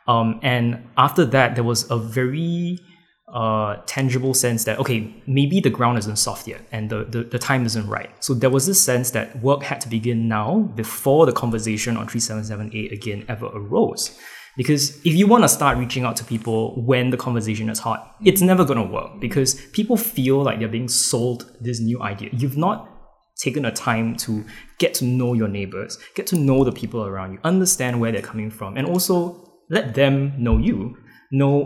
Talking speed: 200 wpm